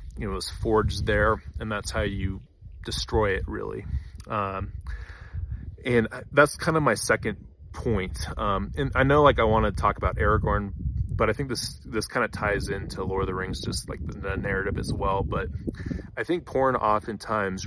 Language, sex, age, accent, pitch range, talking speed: English, male, 30-49, American, 95-110 Hz, 195 wpm